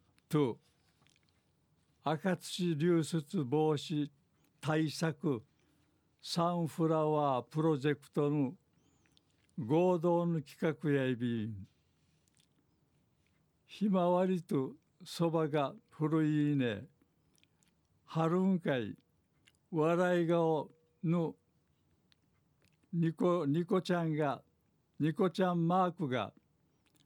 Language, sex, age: Japanese, male, 60-79